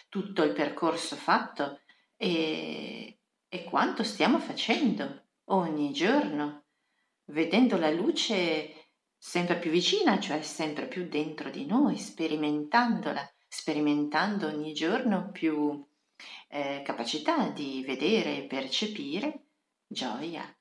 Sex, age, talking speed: female, 40-59, 100 wpm